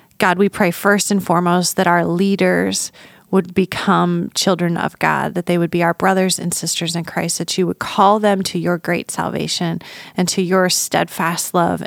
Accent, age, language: American, 30-49, English